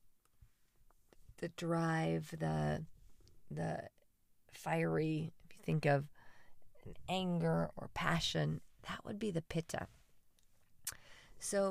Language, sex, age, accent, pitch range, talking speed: English, female, 40-59, American, 140-170 Hz, 90 wpm